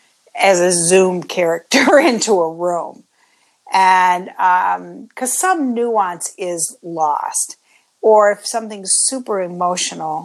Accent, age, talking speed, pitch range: American, 50-69, 110 wpm, 165-205 Hz